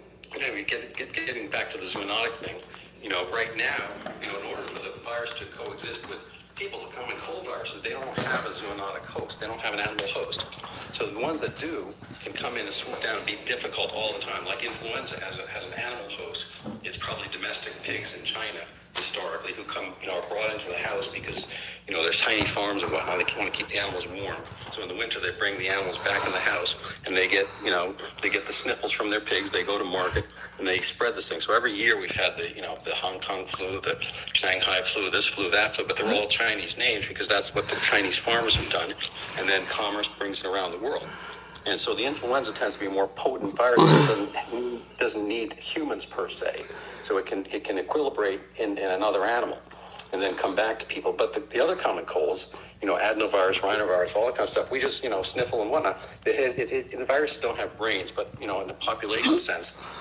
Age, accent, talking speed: 50-69, American, 235 wpm